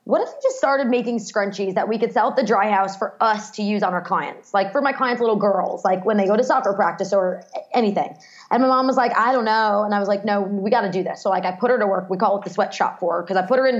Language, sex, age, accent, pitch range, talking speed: English, female, 20-39, American, 200-245 Hz, 320 wpm